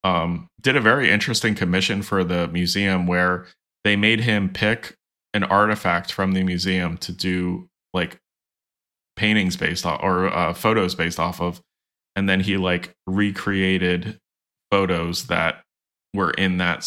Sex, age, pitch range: male, 20-39, 90-100 Hz